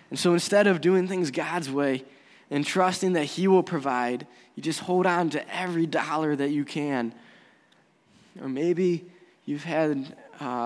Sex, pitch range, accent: male, 135-170 Hz, American